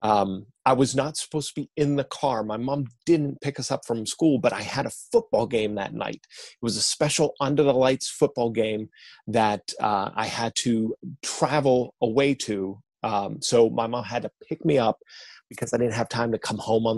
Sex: male